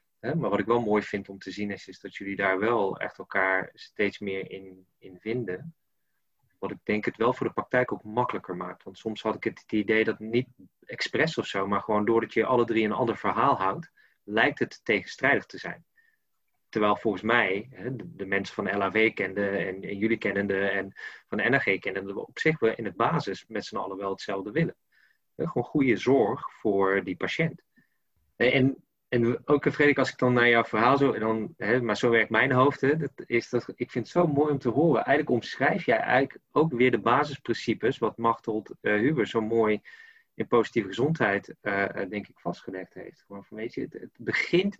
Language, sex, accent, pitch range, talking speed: Dutch, male, Dutch, 105-130 Hz, 205 wpm